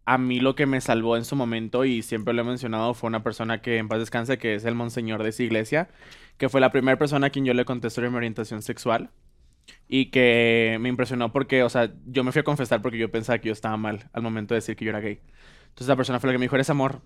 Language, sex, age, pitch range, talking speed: Spanish, male, 20-39, 115-135 Hz, 275 wpm